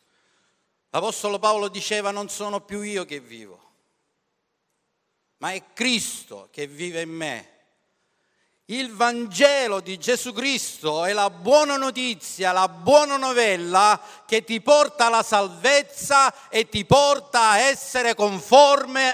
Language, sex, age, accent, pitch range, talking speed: Italian, male, 50-69, native, 180-250 Hz, 120 wpm